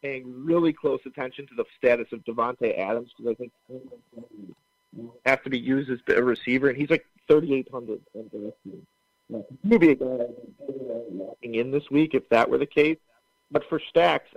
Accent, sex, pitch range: American, male, 125-160 Hz